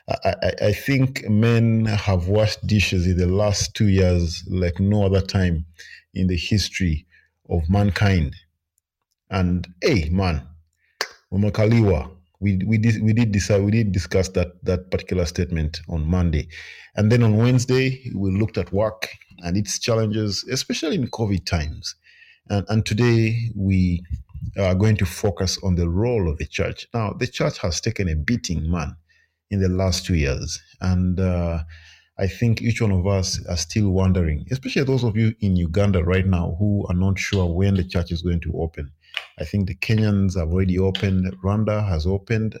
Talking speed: 175 wpm